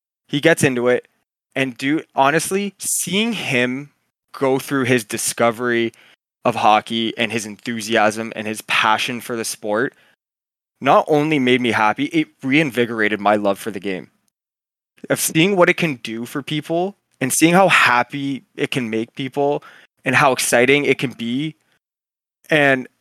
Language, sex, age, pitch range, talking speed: English, male, 20-39, 115-145 Hz, 155 wpm